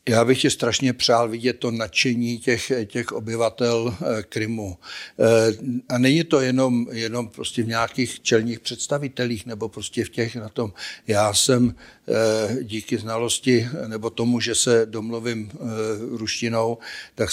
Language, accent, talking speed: Czech, native, 135 wpm